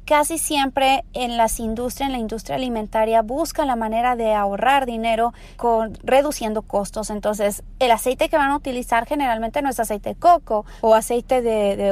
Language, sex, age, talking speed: Spanish, female, 30-49, 175 wpm